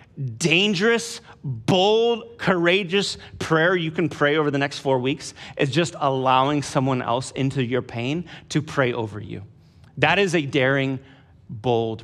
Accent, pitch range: American, 125-170 Hz